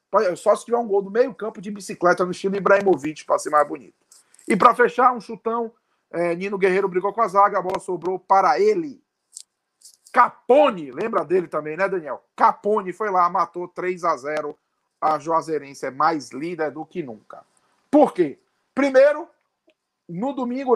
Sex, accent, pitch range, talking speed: male, Brazilian, 175-225 Hz, 170 wpm